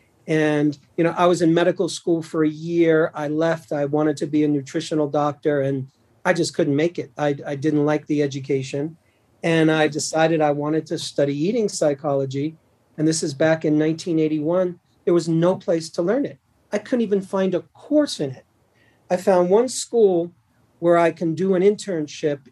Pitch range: 145-190 Hz